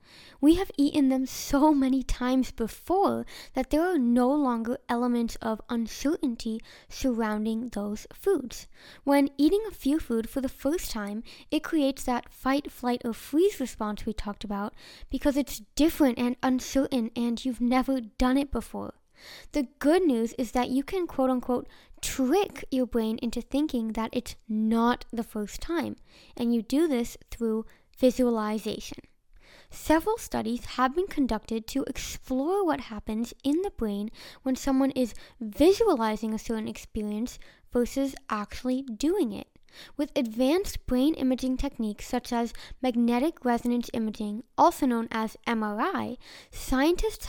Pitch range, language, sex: 230-280 Hz, English, female